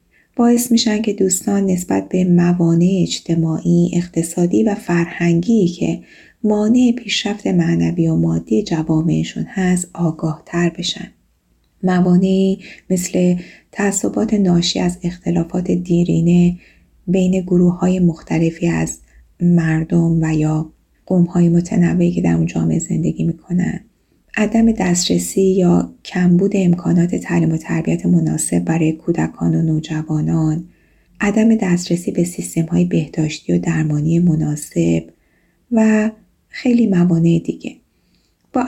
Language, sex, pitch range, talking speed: Persian, female, 160-195 Hz, 110 wpm